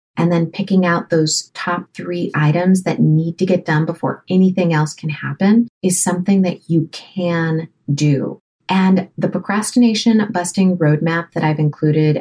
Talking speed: 155 wpm